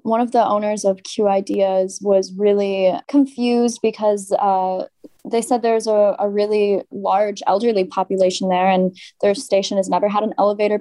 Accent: American